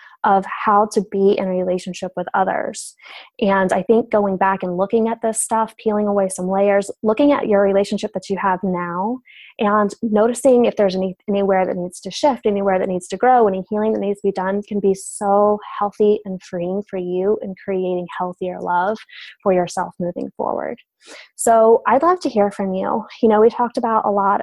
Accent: American